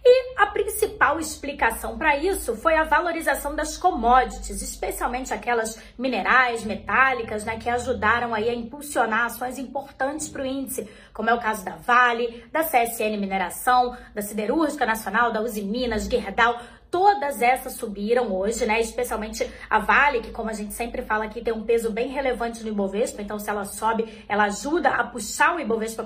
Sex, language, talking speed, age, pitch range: female, Portuguese, 170 wpm, 20-39, 230-295 Hz